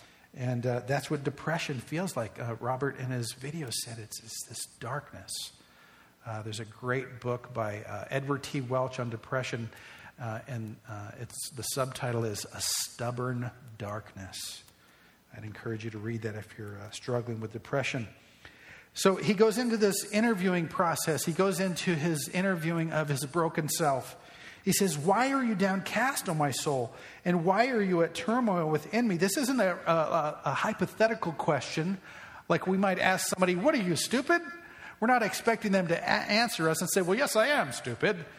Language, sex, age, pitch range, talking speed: English, male, 50-69, 130-205 Hz, 175 wpm